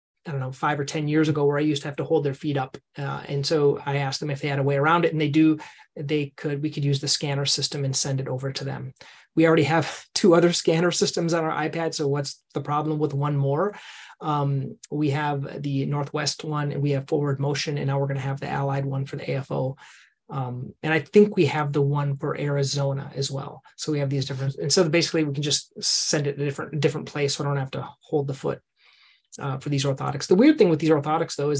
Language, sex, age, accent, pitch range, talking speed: English, male, 30-49, American, 140-160 Hz, 260 wpm